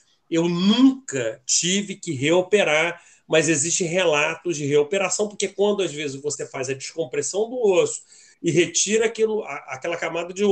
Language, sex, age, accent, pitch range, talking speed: Portuguese, male, 40-59, Brazilian, 155-200 Hz, 150 wpm